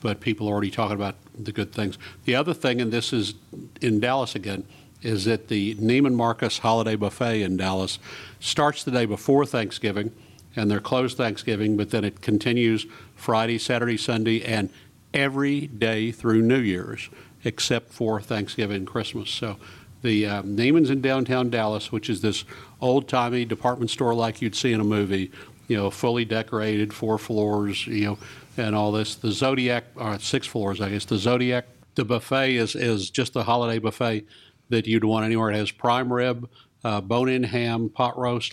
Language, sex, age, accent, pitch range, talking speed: English, male, 50-69, American, 105-125 Hz, 180 wpm